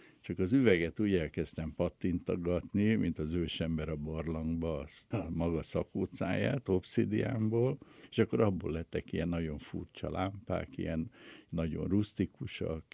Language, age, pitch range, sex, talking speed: Hungarian, 60-79, 80-95 Hz, male, 120 wpm